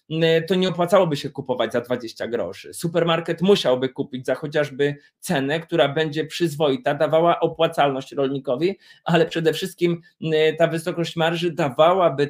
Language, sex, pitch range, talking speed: Polish, male, 145-170 Hz, 130 wpm